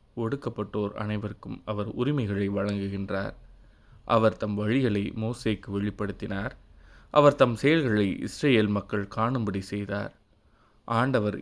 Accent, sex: native, male